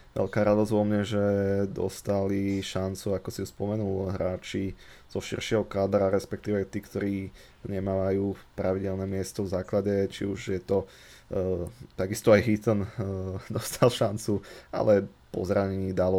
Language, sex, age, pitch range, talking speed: Slovak, male, 20-39, 95-105 Hz, 140 wpm